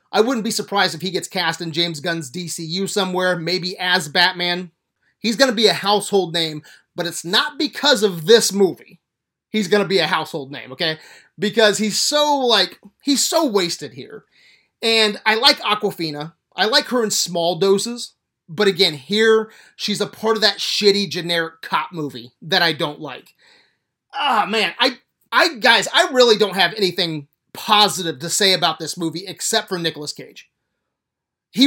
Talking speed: 175 wpm